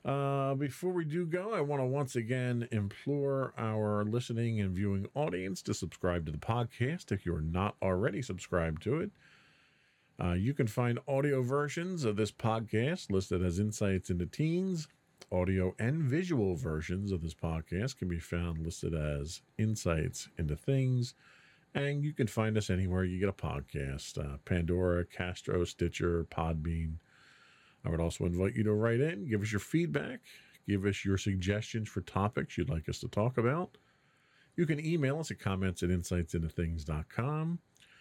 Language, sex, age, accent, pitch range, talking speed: English, male, 40-59, American, 90-140 Hz, 165 wpm